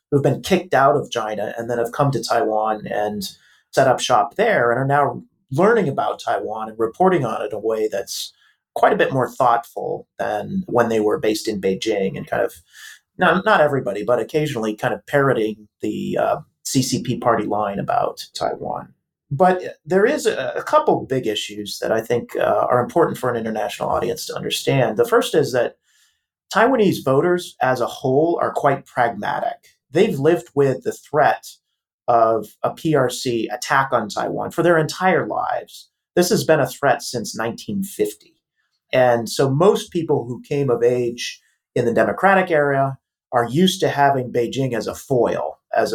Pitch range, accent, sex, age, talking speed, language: 120-170 Hz, American, male, 30-49, 180 wpm, English